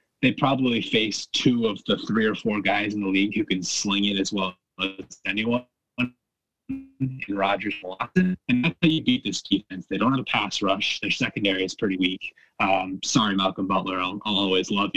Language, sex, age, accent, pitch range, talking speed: English, male, 20-39, American, 95-130 Hz, 195 wpm